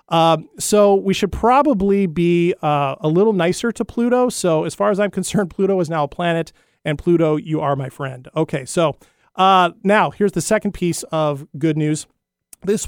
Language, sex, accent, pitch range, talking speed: English, male, American, 155-205 Hz, 190 wpm